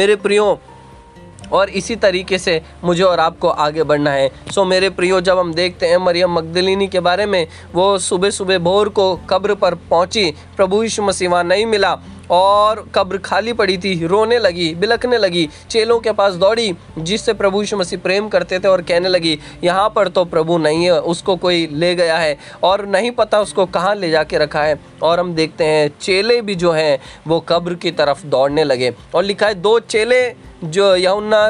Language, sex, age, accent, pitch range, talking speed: Hindi, male, 20-39, native, 175-210 Hz, 190 wpm